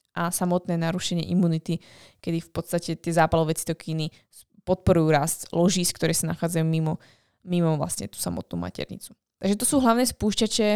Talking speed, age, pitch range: 155 wpm, 20-39, 175-200 Hz